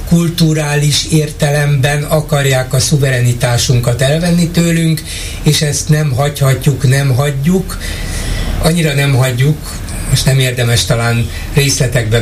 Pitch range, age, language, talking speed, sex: 115-140 Hz, 60-79, Hungarian, 105 wpm, male